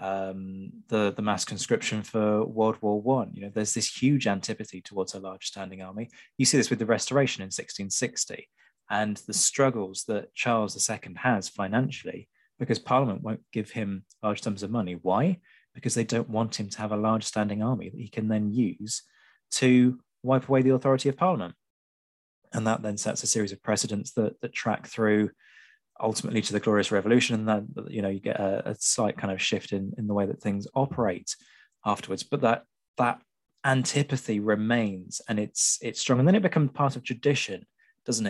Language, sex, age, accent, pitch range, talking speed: English, male, 20-39, British, 105-125 Hz, 195 wpm